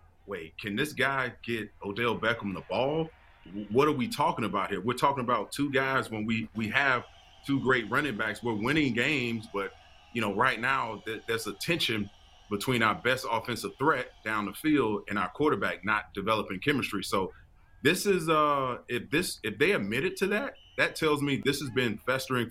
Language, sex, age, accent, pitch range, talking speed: English, male, 30-49, American, 100-130 Hz, 195 wpm